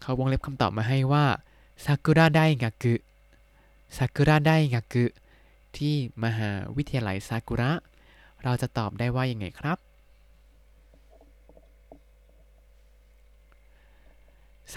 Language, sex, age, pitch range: Thai, male, 20-39, 100-145 Hz